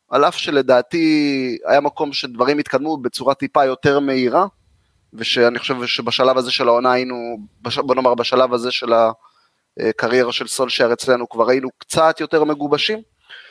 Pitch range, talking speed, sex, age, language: 120-155 Hz, 145 wpm, male, 30-49, Hebrew